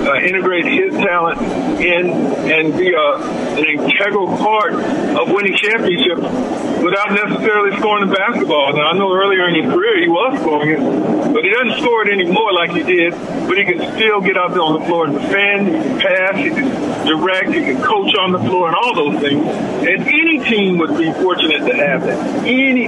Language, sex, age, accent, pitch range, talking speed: English, male, 50-69, American, 165-230 Hz, 200 wpm